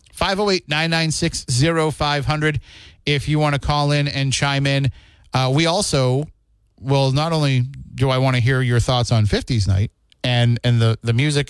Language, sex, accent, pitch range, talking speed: English, male, American, 115-145 Hz, 155 wpm